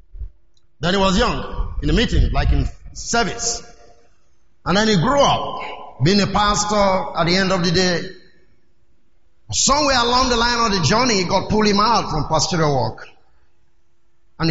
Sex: male